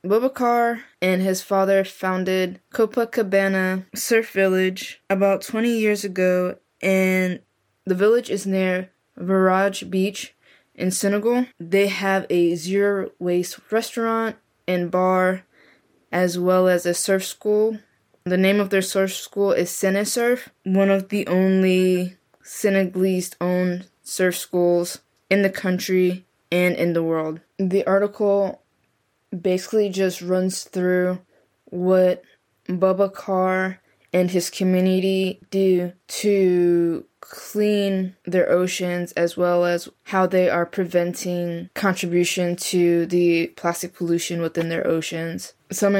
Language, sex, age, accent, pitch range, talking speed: English, female, 20-39, American, 180-195 Hz, 120 wpm